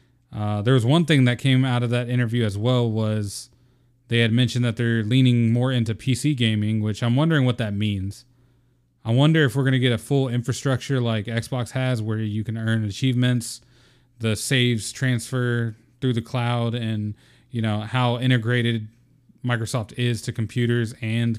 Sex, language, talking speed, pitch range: male, English, 180 wpm, 115-125 Hz